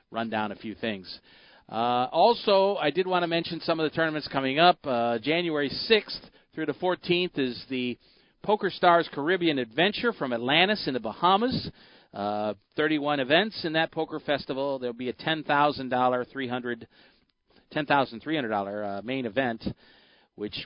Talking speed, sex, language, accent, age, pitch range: 155 wpm, male, English, American, 40-59, 110-155 Hz